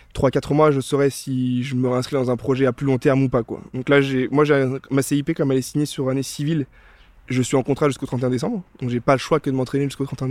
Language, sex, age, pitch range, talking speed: French, male, 20-39, 125-145 Hz, 285 wpm